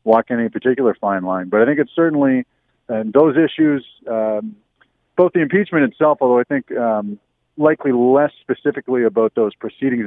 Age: 40-59